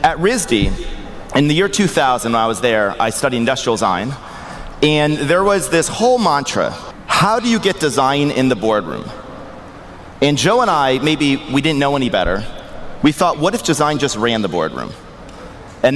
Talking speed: 180 wpm